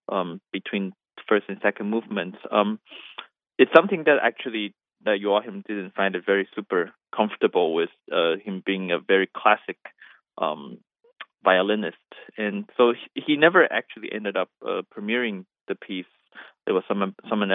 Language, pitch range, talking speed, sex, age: English, 100-135 Hz, 150 wpm, male, 20-39